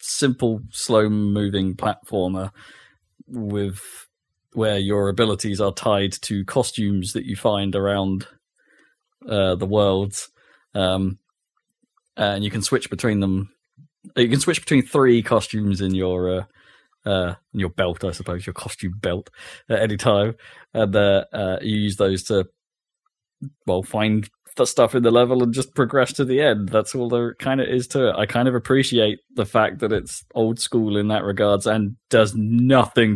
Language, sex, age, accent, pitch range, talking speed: English, male, 20-39, British, 100-120 Hz, 165 wpm